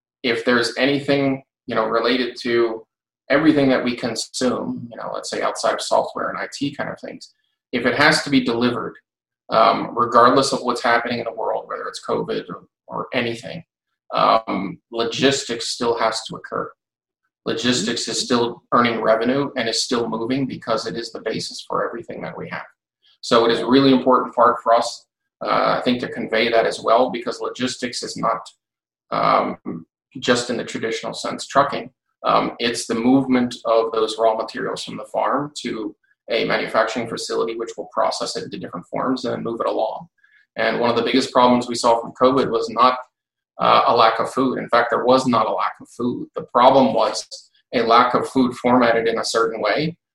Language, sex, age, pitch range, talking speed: English, male, 30-49, 115-135 Hz, 190 wpm